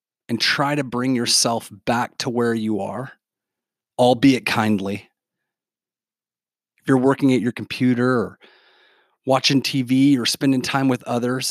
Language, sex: English, male